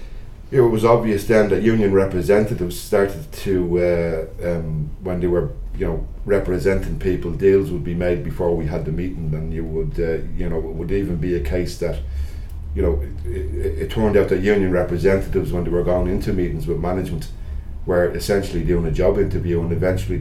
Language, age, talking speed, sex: English, 40-59, 195 wpm, male